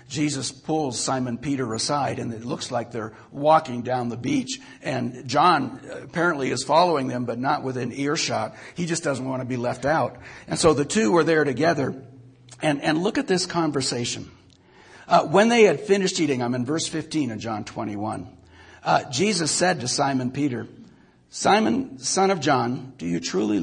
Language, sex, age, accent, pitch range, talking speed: English, male, 60-79, American, 110-140 Hz, 180 wpm